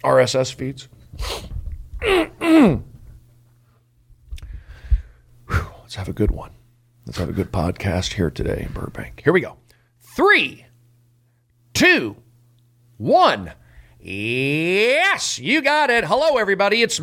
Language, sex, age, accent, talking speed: English, male, 40-59, American, 110 wpm